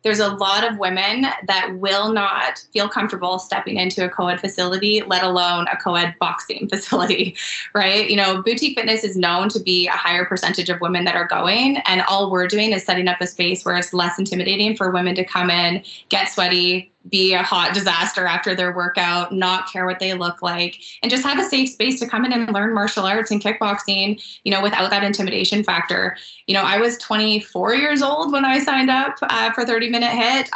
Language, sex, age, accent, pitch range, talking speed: English, female, 20-39, American, 180-215 Hz, 210 wpm